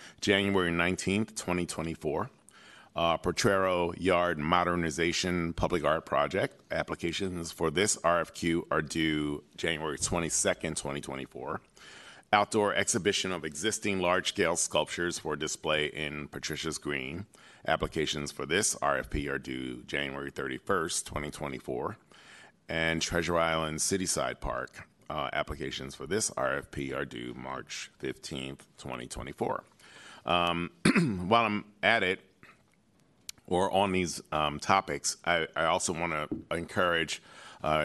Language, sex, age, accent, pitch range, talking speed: English, male, 40-59, American, 75-90 Hz, 115 wpm